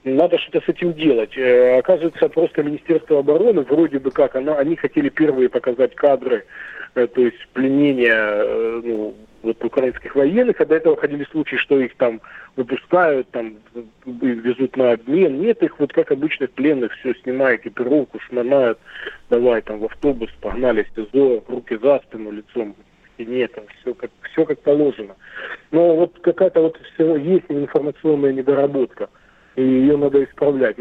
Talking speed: 165 wpm